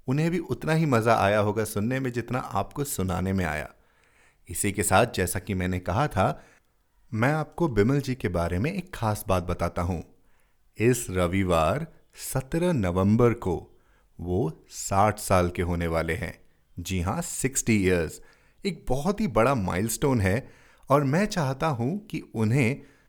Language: Hindi